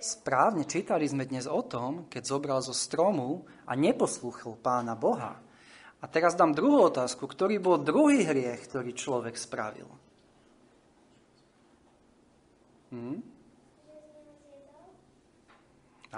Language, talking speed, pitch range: Slovak, 100 wpm, 120-170 Hz